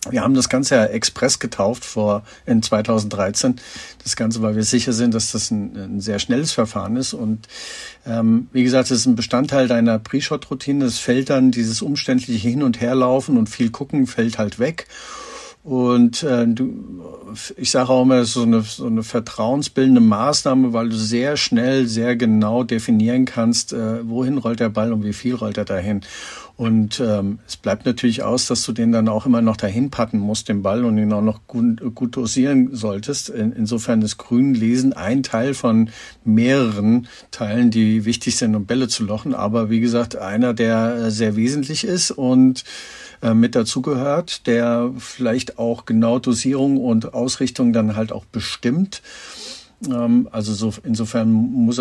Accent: German